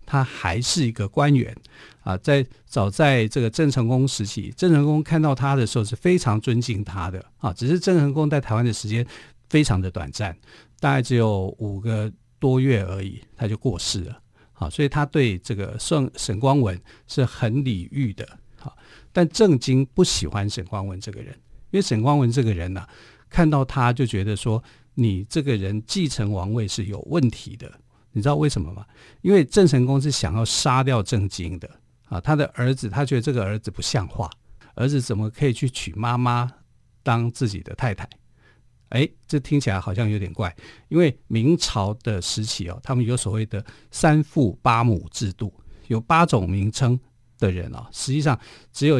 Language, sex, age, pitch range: Chinese, male, 50-69, 105-135 Hz